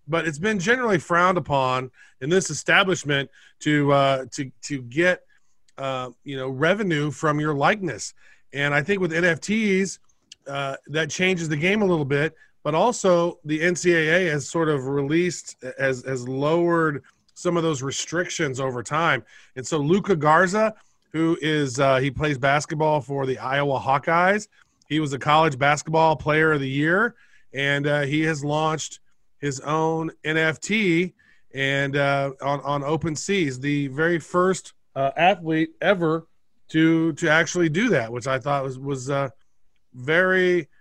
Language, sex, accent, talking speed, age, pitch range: English, male, American, 155 wpm, 30-49, 145-185 Hz